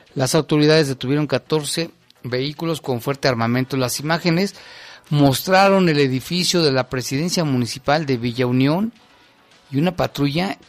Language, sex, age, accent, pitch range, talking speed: Spanish, male, 40-59, Mexican, 130-155 Hz, 130 wpm